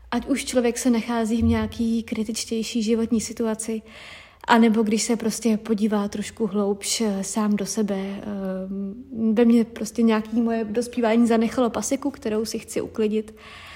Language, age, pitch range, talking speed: Czech, 30-49, 210-245 Hz, 140 wpm